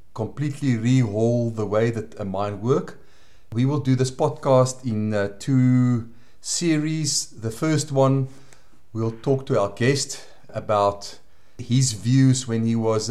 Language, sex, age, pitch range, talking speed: English, male, 40-59, 115-135 Hz, 135 wpm